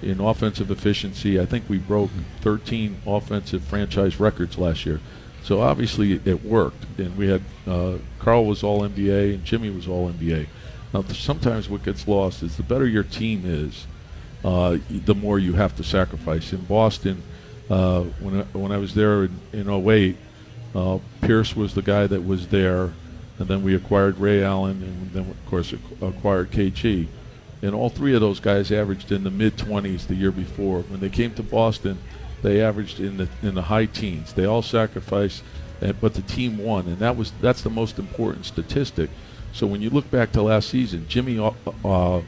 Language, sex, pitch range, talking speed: English, male, 90-110 Hz, 185 wpm